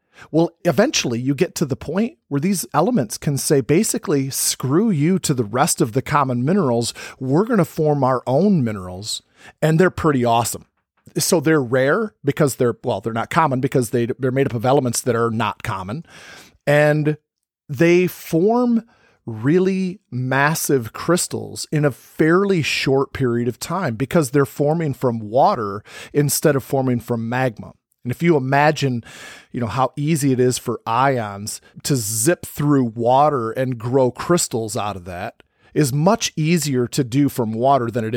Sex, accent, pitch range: male, American, 120-155 Hz